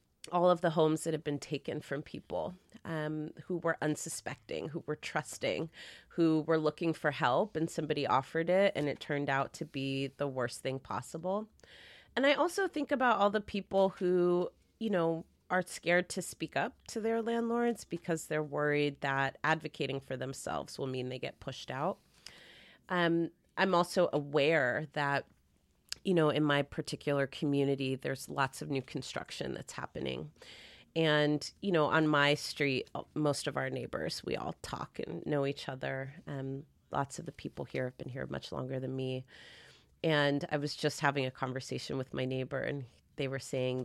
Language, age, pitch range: English, 30-49, 140-170 Hz